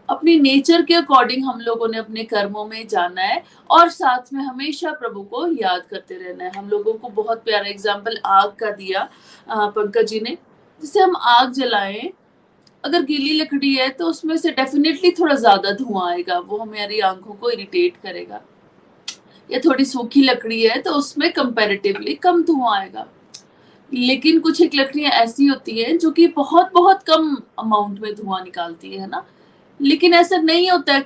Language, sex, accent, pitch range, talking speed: Hindi, female, native, 210-315 Hz, 175 wpm